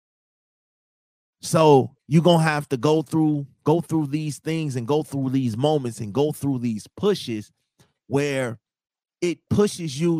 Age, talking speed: 30-49, 145 wpm